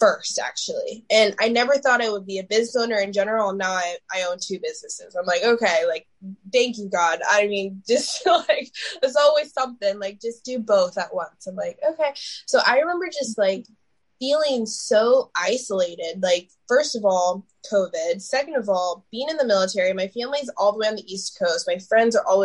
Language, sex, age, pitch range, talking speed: English, female, 20-39, 190-255 Hz, 205 wpm